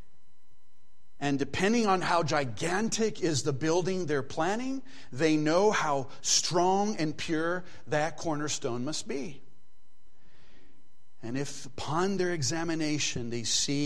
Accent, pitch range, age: American, 120-155 Hz, 40-59